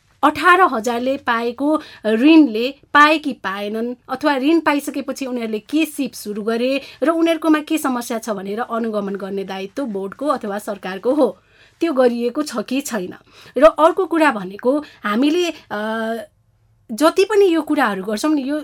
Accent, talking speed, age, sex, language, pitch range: Indian, 145 wpm, 30-49, female, English, 230-305 Hz